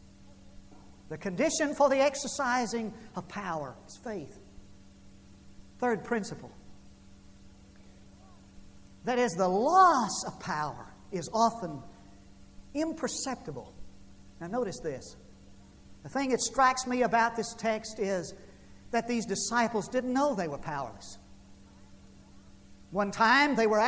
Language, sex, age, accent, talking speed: English, male, 50-69, American, 110 wpm